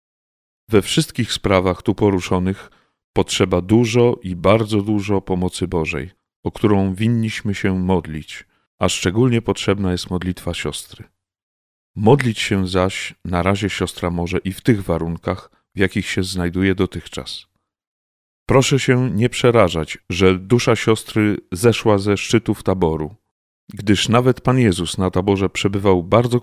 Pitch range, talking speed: 90-110 Hz, 130 wpm